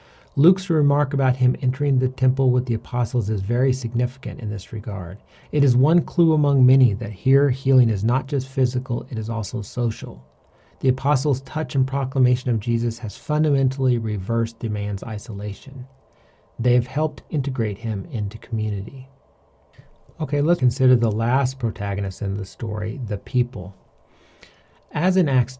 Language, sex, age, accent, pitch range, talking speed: English, male, 40-59, American, 110-130 Hz, 155 wpm